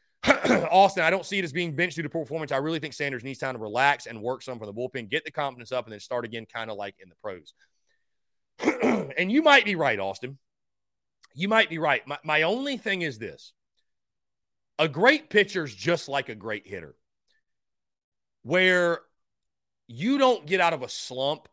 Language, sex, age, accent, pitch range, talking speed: English, male, 30-49, American, 120-180 Hz, 205 wpm